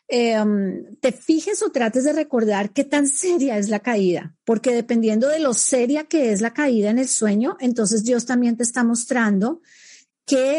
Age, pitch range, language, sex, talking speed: 40-59, 205-265 Hz, Spanish, female, 180 wpm